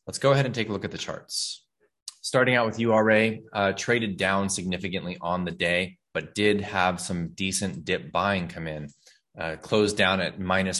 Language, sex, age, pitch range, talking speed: English, male, 20-39, 85-105 Hz, 195 wpm